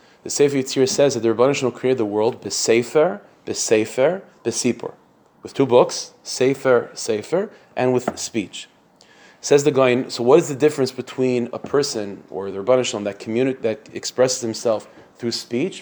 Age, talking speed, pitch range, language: 30-49, 150 wpm, 115-135 Hz, English